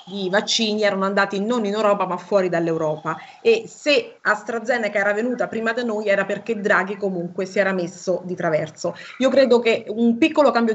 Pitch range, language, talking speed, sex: 190-245 Hz, Italian, 185 wpm, female